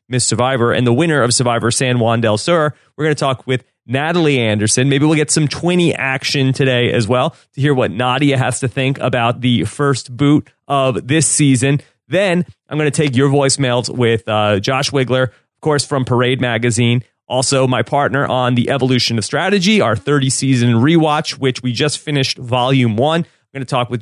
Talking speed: 200 wpm